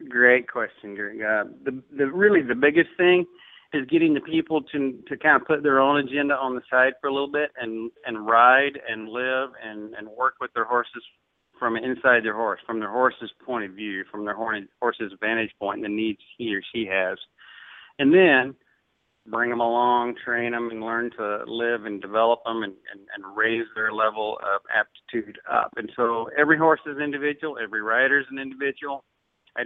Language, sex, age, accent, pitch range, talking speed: English, male, 40-59, American, 115-135 Hz, 200 wpm